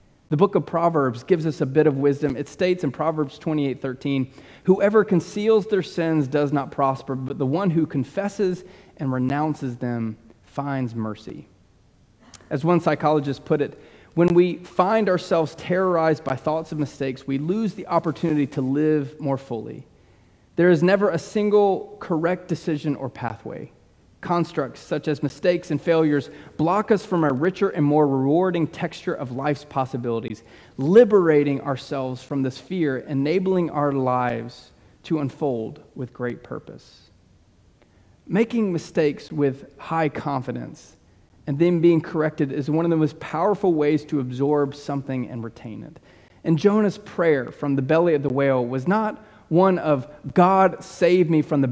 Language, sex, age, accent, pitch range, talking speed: English, male, 30-49, American, 135-175 Hz, 155 wpm